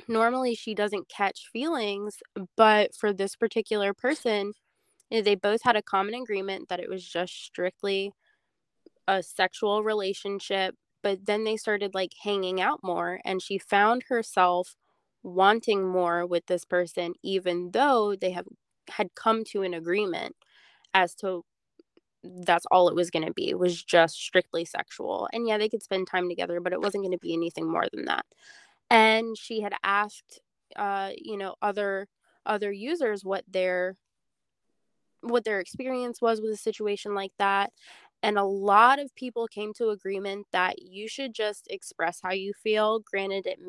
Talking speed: 165 wpm